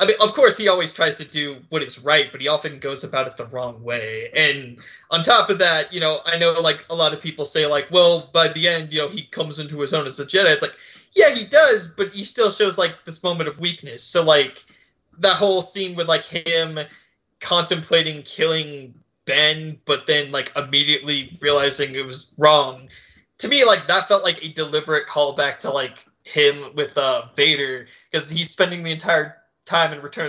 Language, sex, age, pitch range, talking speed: English, male, 20-39, 145-180 Hz, 210 wpm